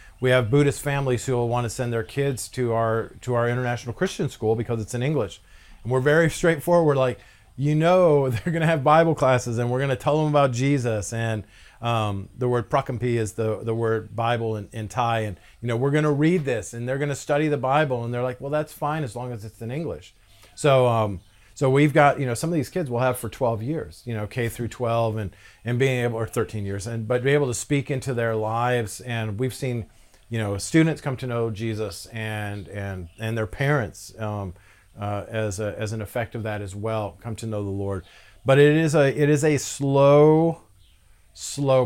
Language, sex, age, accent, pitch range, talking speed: English, male, 40-59, American, 105-130 Hz, 230 wpm